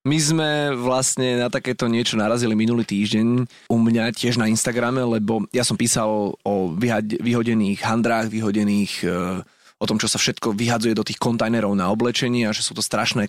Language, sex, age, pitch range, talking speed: Slovak, male, 30-49, 110-135 Hz, 180 wpm